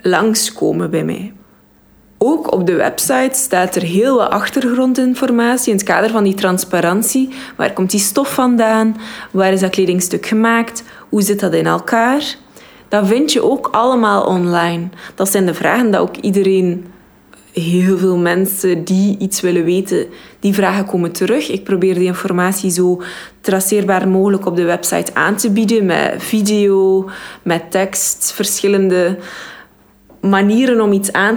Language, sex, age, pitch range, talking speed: Dutch, female, 20-39, 185-220 Hz, 150 wpm